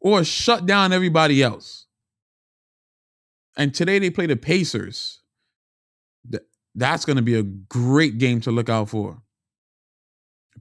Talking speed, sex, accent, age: 130 wpm, male, American, 20-39